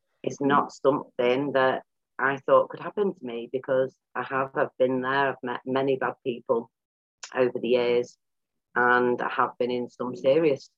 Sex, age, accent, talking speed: female, 30-49, British, 165 wpm